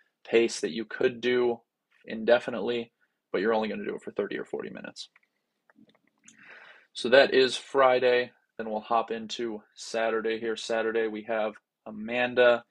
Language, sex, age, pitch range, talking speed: English, male, 20-39, 110-120 Hz, 150 wpm